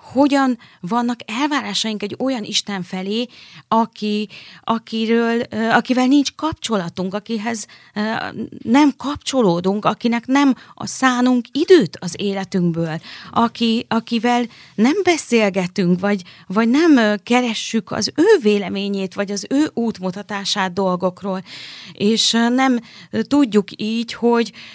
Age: 30-49